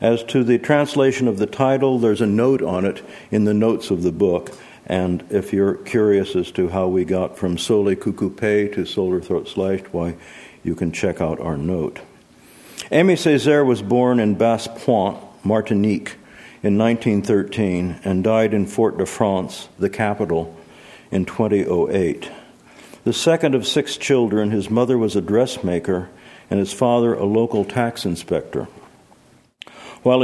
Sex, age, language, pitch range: male, 60-79, English, 95-120 Hz